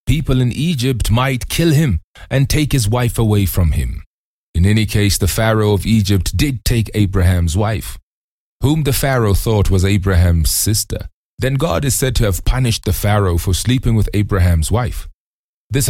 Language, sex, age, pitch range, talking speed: English, male, 30-49, 90-120 Hz, 175 wpm